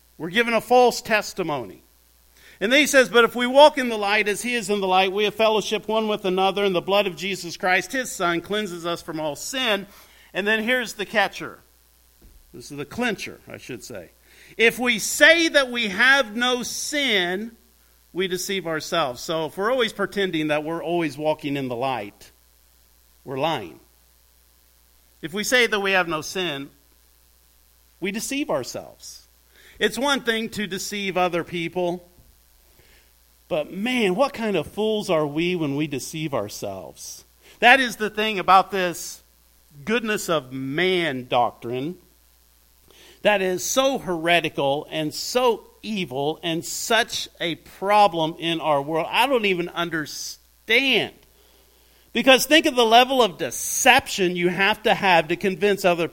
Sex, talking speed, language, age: male, 160 wpm, English, 50-69